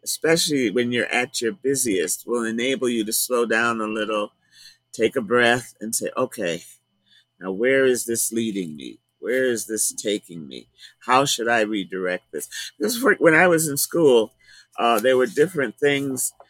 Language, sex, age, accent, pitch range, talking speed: English, male, 50-69, American, 105-125 Hz, 170 wpm